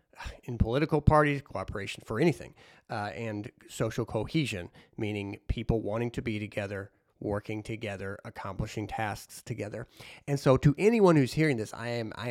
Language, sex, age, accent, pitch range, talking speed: English, male, 40-59, American, 110-140 Hz, 150 wpm